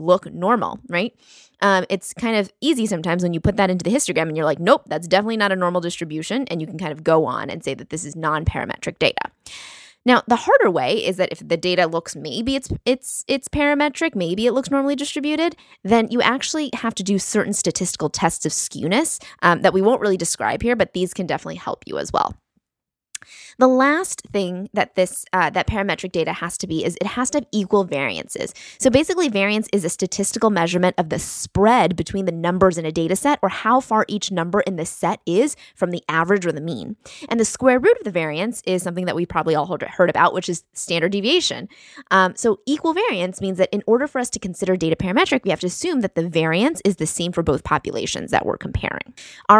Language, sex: English, female